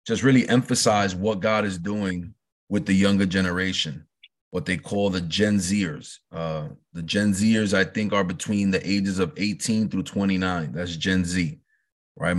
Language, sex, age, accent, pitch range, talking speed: English, male, 30-49, American, 90-105 Hz, 170 wpm